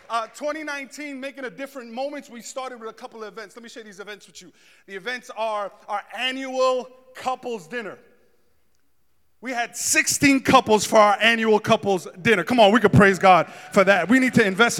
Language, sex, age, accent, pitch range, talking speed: English, male, 30-49, American, 210-260 Hz, 195 wpm